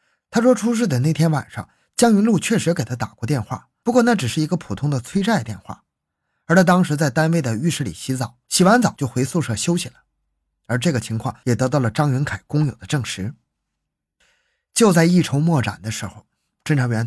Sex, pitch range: male, 115-170 Hz